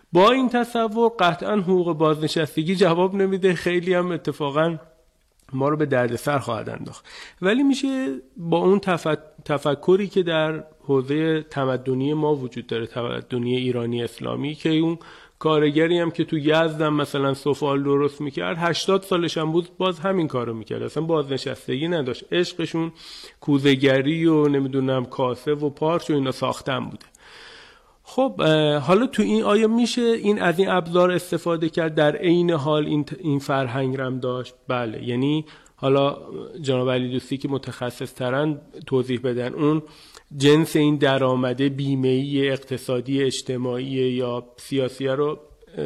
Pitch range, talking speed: 130-170 Hz, 140 wpm